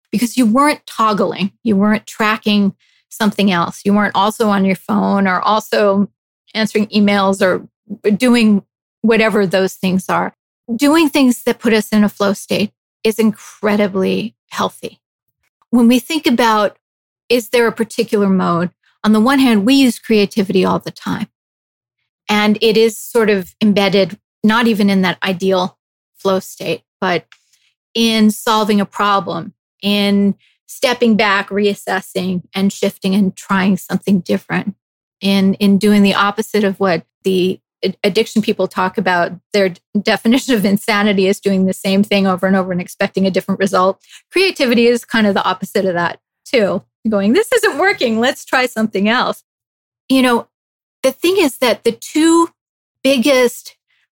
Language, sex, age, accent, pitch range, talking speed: English, female, 30-49, American, 195-230 Hz, 155 wpm